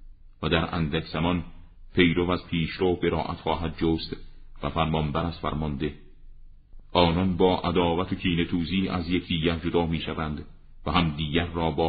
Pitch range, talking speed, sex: 80-95 Hz, 140 wpm, male